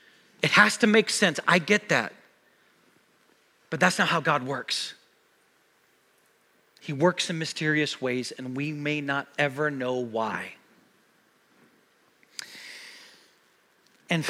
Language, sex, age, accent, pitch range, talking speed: English, male, 40-59, American, 150-210 Hz, 115 wpm